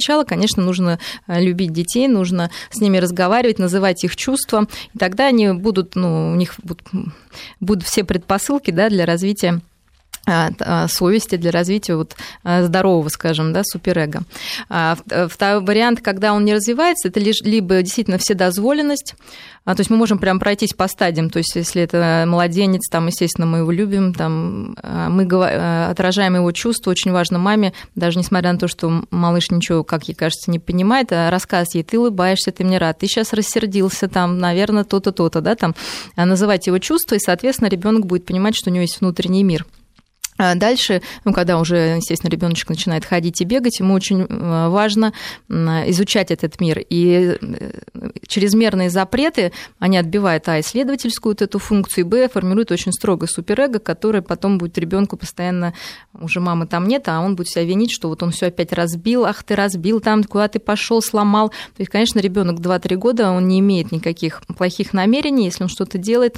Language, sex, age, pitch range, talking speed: Russian, female, 20-39, 175-210 Hz, 170 wpm